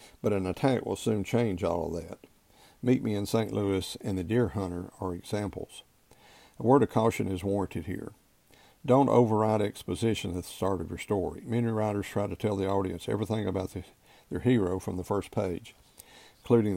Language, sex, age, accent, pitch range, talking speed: English, male, 50-69, American, 95-110 Hz, 185 wpm